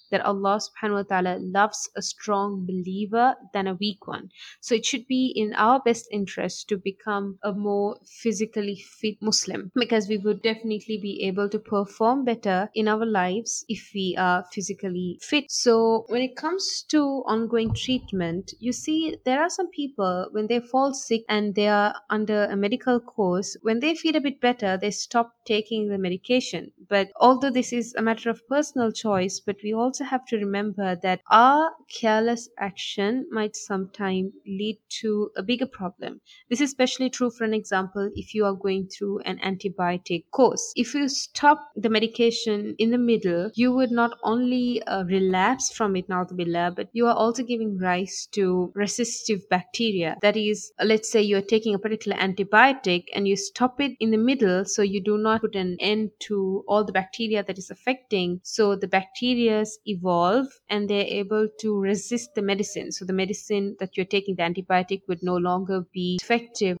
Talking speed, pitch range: 185 wpm, 195-235 Hz